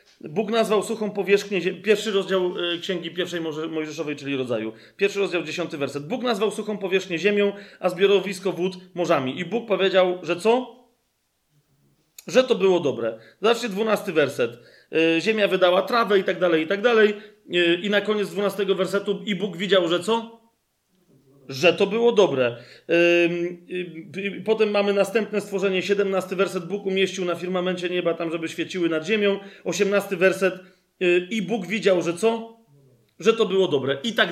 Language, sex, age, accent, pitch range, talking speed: Polish, male, 40-59, native, 170-205 Hz, 155 wpm